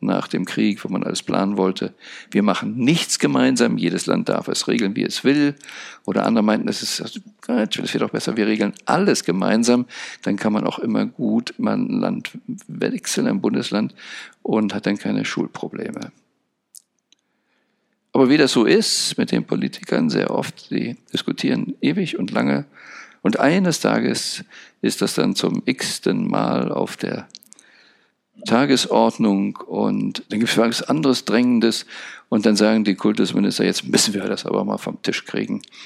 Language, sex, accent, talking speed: German, male, German, 160 wpm